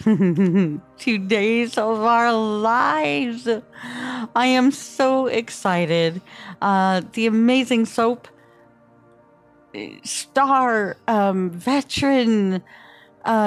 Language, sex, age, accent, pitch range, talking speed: English, female, 40-59, American, 165-220 Hz, 75 wpm